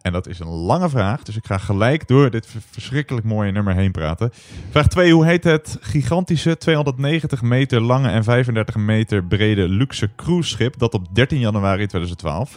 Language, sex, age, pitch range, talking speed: Dutch, male, 30-49, 100-135 Hz, 175 wpm